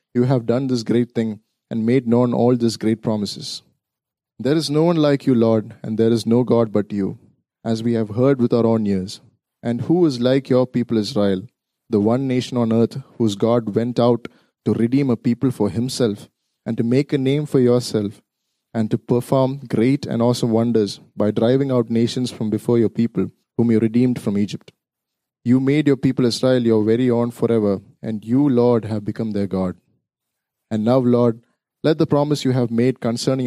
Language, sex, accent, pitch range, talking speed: English, male, Indian, 115-130 Hz, 195 wpm